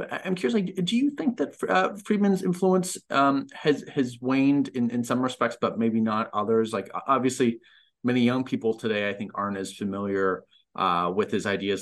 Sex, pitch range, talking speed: male, 95-130 Hz, 190 wpm